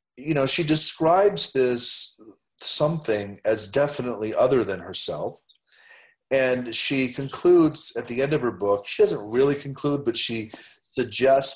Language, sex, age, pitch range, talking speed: English, male, 40-59, 100-130 Hz, 140 wpm